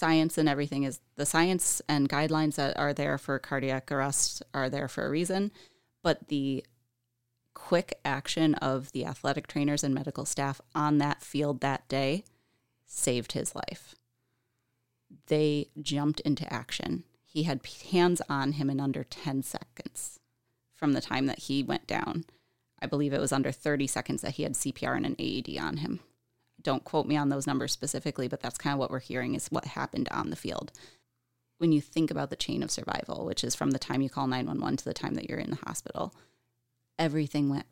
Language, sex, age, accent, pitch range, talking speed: English, female, 30-49, American, 125-150 Hz, 190 wpm